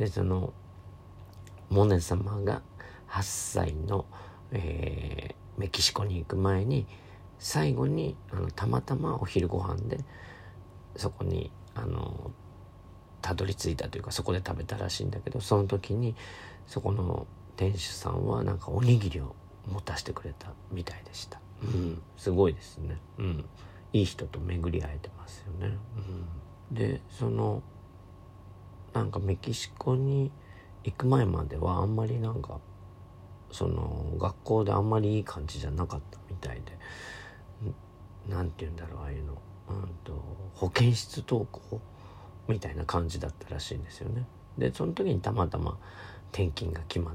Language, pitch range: Japanese, 90-100 Hz